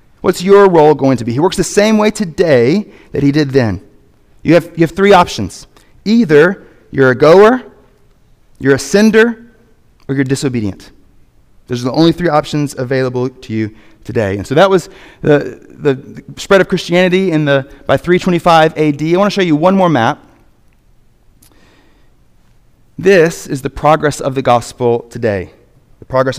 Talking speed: 165 wpm